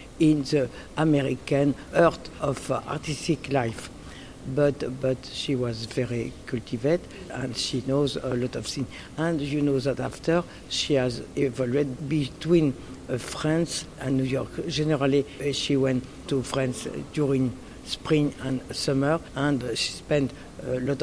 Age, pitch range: 60-79, 130-160 Hz